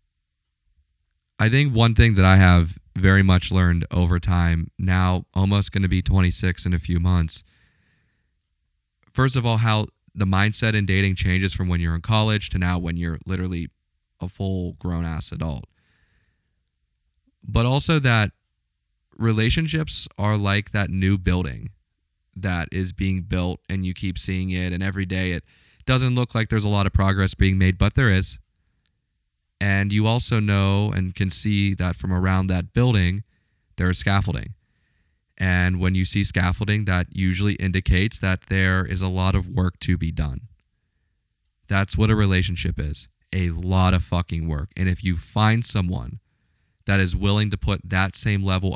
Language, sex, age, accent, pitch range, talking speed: English, male, 20-39, American, 90-100 Hz, 170 wpm